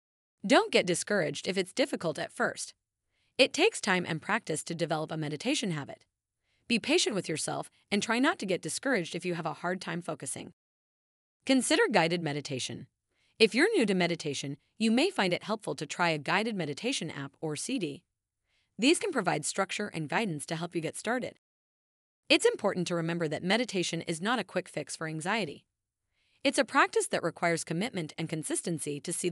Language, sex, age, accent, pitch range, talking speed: English, female, 30-49, American, 160-245 Hz, 185 wpm